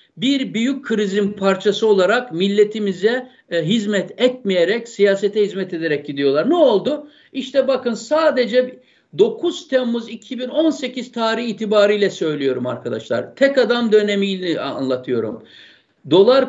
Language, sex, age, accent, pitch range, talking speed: Turkish, male, 60-79, native, 205-260 Hz, 105 wpm